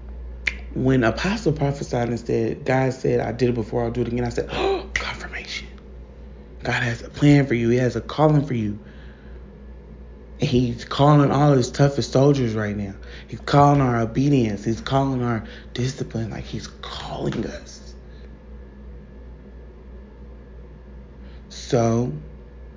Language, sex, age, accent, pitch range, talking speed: English, male, 20-39, American, 95-130 Hz, 135 wpm